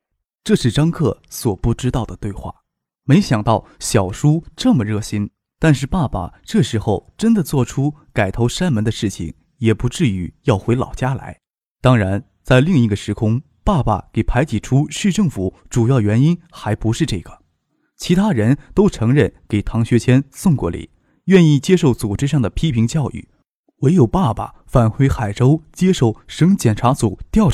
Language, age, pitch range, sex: Chinese, 20-39, 105-145 Hz, male